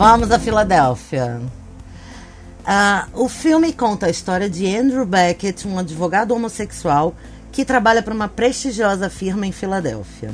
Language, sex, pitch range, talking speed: Portuguese, female, 150-215 Hz, 135 wpm